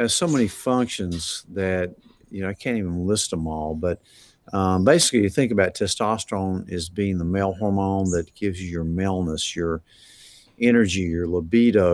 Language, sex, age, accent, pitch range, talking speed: English, male, 50-69, American, 90-110 Hz, 165 wpm